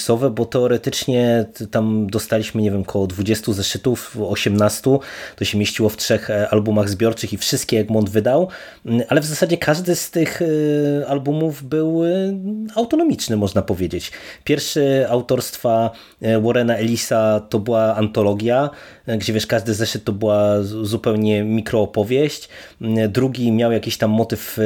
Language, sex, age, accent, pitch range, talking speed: Polish, male, 20-39, native, 110-140 Hz, 130 wpm